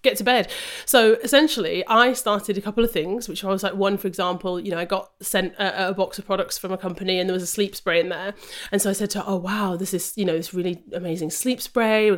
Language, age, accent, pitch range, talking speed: English, 30-49, British, 175-215 Hz, 280 wpm